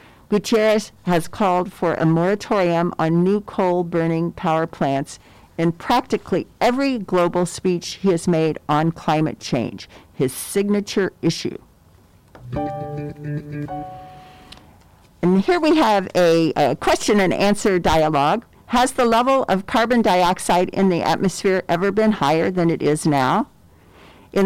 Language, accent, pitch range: English, American, 155-200 Hz